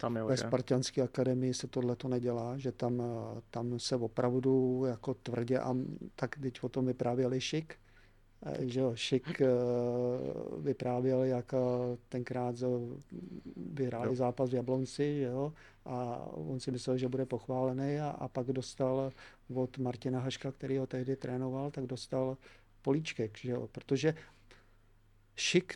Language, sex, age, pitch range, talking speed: Czech, male, 50-69, 120-140 Hz, 135 wpm